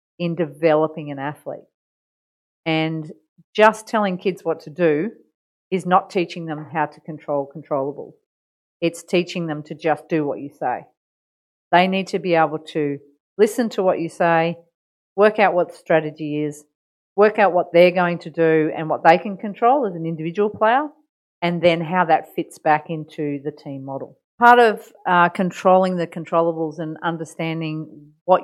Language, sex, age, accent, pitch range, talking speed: English, female, 40-59, Australian, 155-185 Hz, 170 wpm